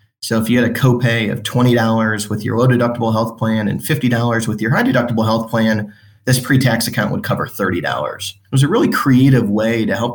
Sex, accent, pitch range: male, American, 105-120 Hz